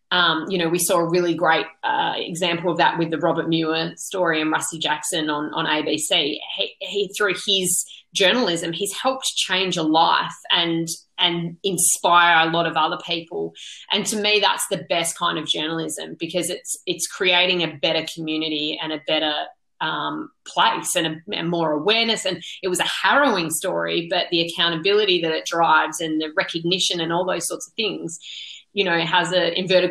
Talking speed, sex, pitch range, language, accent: 185 wpm, female, 165-185 Hz, English, Australian